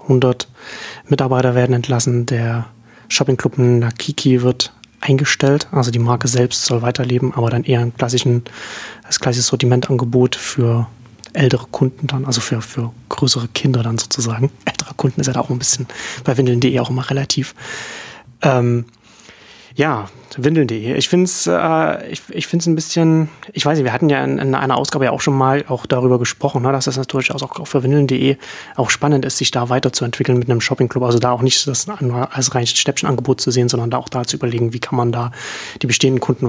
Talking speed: 190 wpm